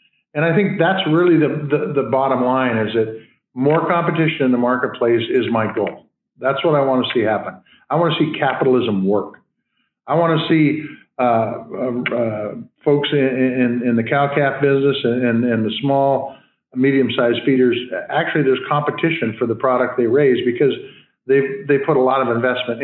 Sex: male